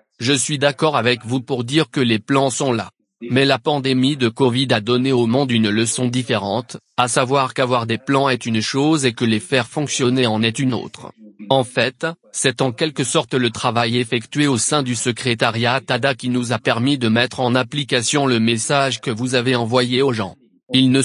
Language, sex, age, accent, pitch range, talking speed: English, male, 30-49, French, 120-140 Hz, 210 wpm